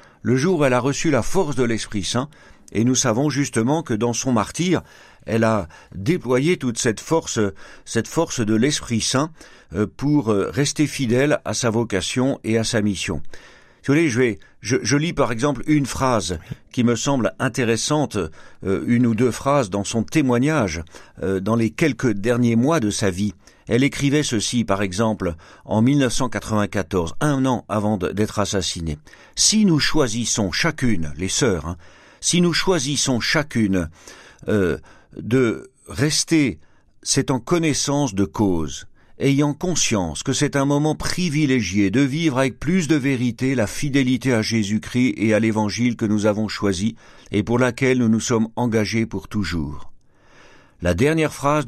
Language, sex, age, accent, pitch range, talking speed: French, male, 50-69, French, 105-140 Hz, 160 wpm